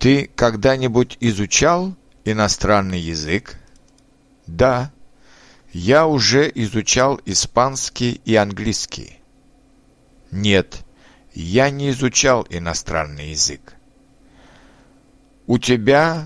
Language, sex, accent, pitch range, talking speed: Russian, male, native, 95-135 Hz, 75 wpm